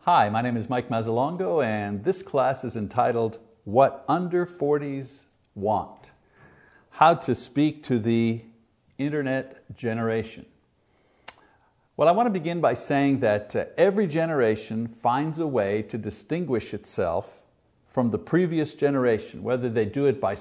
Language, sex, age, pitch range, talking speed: English, male, 50-69, 110-150 Hz, 140 wpm